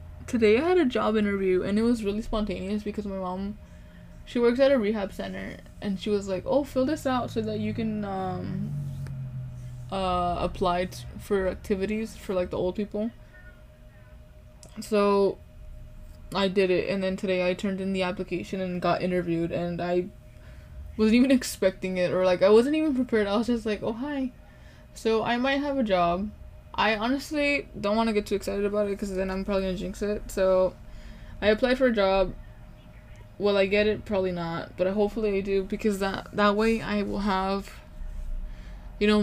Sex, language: female, English